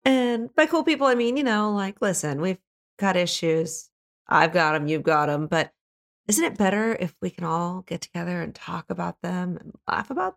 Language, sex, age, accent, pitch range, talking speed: English, female, 30-49, American, 155-205 Hz, 210 wpm